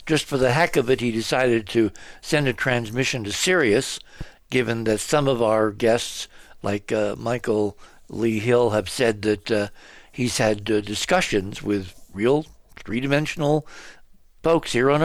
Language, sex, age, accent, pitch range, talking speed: English, male, 60-79, American, 110-140 Hz, 155 wpm